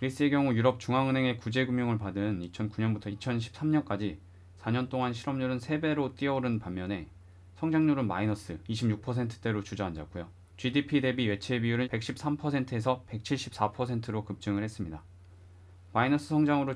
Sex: male